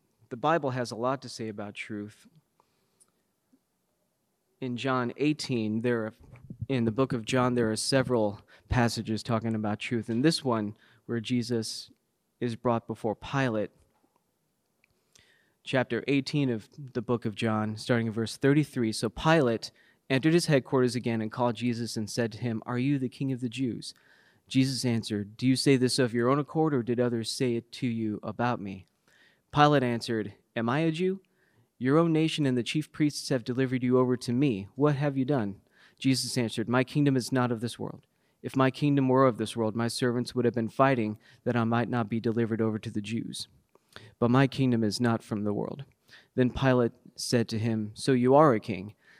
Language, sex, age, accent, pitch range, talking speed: English, male, 30-49, American, 115-135 Hz, 195 wpm